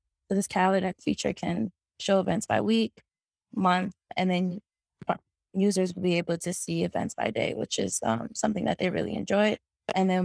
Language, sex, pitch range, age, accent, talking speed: English, female, 170-200 Hz, 20-39, American, 180 wpm